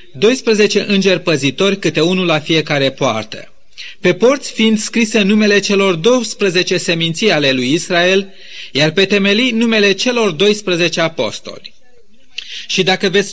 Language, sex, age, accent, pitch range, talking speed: Romanian, male, 30-49, native, 170-215 Hz, 130 wpm